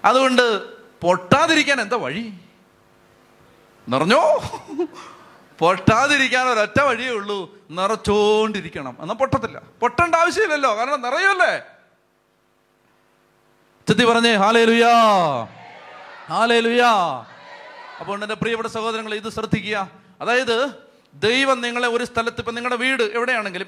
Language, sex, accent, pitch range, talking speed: Malayalam, male, native, 165-225 Hz, 85 wpm